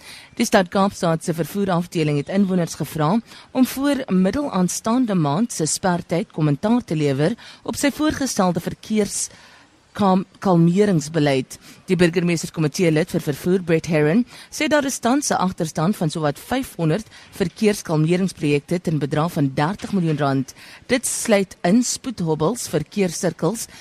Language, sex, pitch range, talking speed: English, female, 155-215 Hz, 120 wpm